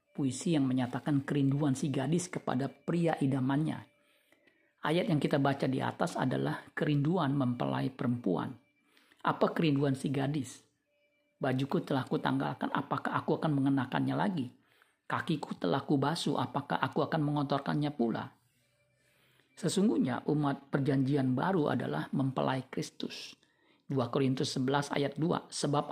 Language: Indonesian